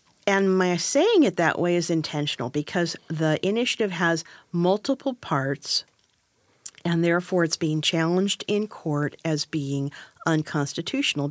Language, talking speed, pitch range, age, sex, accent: English, 125 wpm, 150-190 Hz, 50-69, female, American